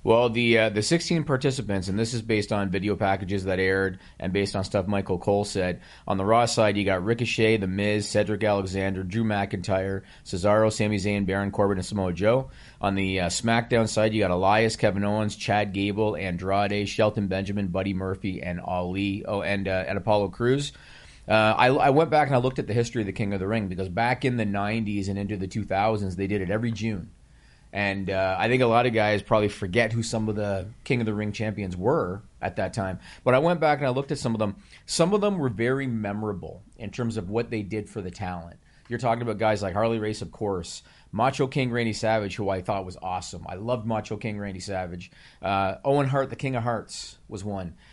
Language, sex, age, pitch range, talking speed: English, male, 30-49, 95-115 Hz, 225 wpm